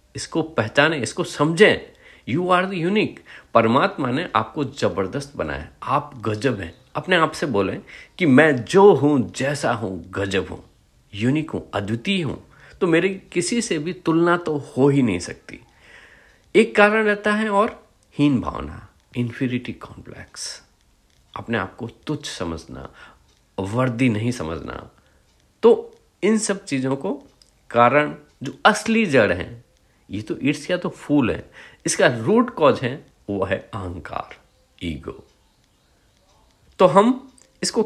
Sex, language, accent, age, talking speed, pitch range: male, Hindi, native, 50-69, 135 wpm, 110-175 Hz